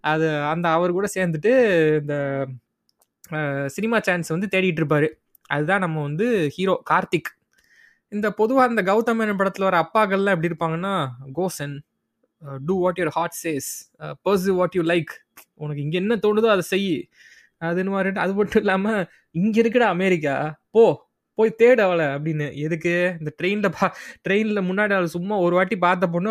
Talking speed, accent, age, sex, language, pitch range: 150 wpm, native, 20-39, male, Tamil, 160-195 Hz